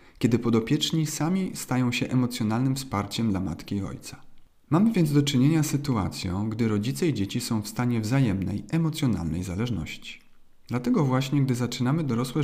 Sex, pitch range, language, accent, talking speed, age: male, 105-135 Hz, Polish, native, 155 wpm, 40-59